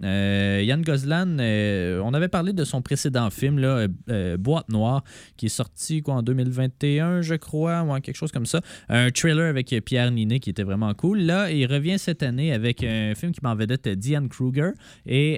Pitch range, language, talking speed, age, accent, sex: 105-150 Hz, French, 205 wpm, 20-39, Canadian, male